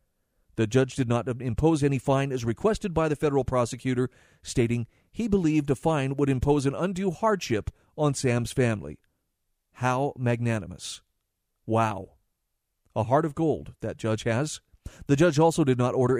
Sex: male